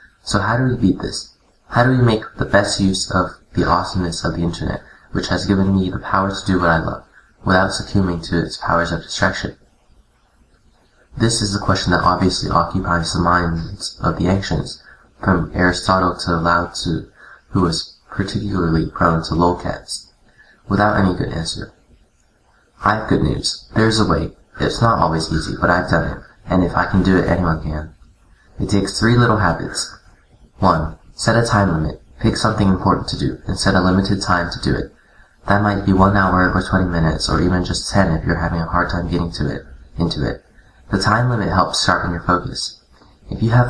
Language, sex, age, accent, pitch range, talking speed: English, male, 20-39, American, 85-100 Hz, 200 wpm